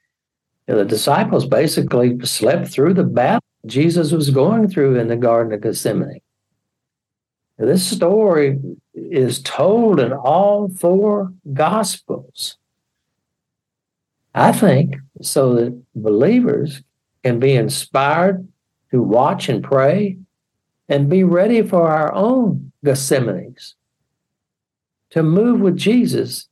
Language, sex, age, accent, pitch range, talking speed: English, male, 60-79, American, 130-185 Hz, 105 wpm